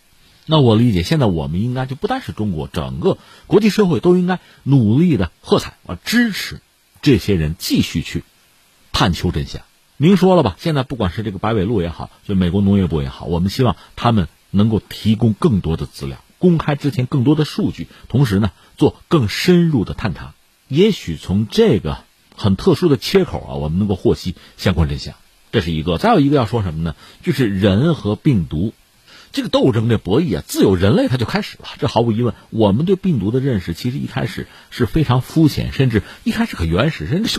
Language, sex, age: Chinese, male, 50-69